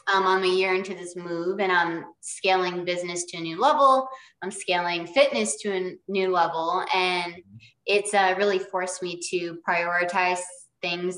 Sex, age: female, 20-39